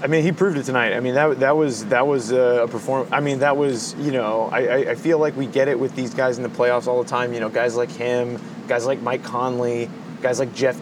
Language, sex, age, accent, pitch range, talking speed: English, male, 20-39, American, 120-150 Hz, 270 wpm